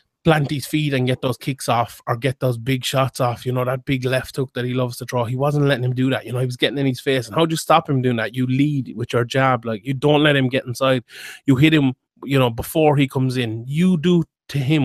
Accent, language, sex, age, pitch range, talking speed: Irish, English, male, 20-39, 125-145 Hz, 290 wpm